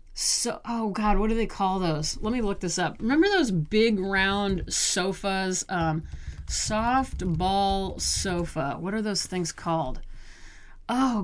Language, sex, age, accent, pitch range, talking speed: English, female, 30-49, American, 180-245 Hz, 150 wpm